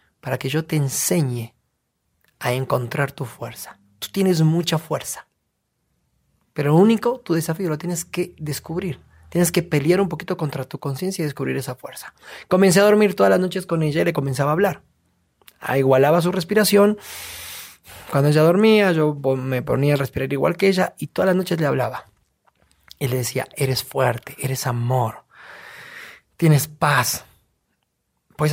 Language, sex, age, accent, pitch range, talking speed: Spanish, male, 30-49, Mexican, 130-165 Hz, 165 wpm